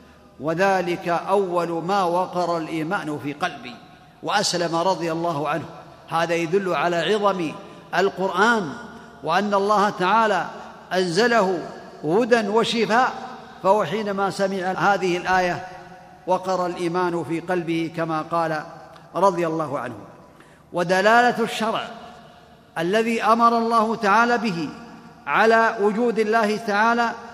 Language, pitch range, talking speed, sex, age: Arabic, 180-225 Hz, 105 wpm, male, 50-69